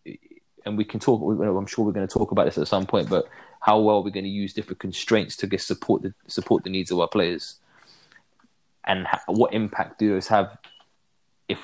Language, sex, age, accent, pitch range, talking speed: English, male, 20-39, British, 95-115 Hz, 215 wpm